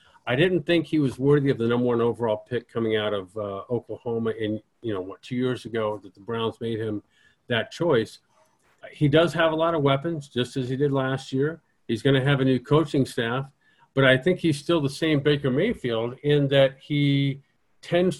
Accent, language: American, English